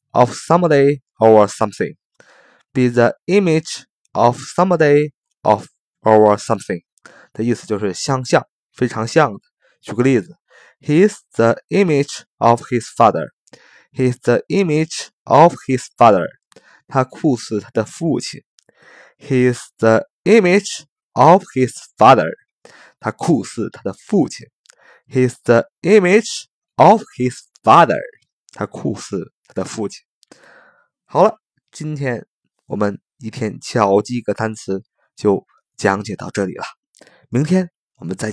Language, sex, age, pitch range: Chinese, male, 20-39, 110-170 Hz